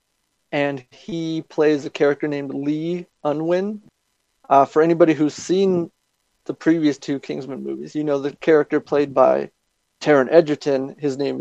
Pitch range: 140-160 Hz